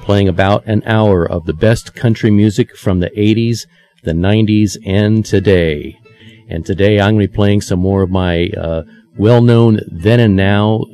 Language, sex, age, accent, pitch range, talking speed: English, male, 40-59, American, 85-110 Hz, 175 wpm